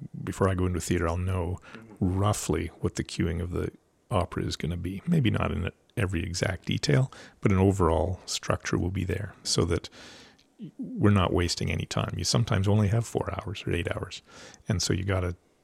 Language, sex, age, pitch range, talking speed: English, male, 40-59, 90-110 Hz, 195 wpm